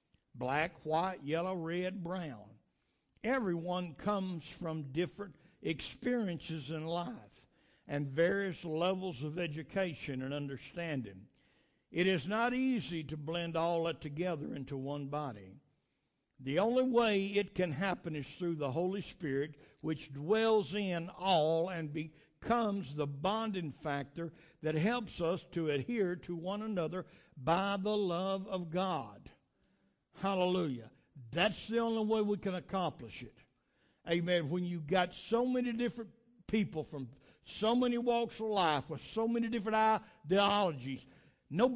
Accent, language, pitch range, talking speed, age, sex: American, English, 155-210 Hz, 135 wpm, 60-79, male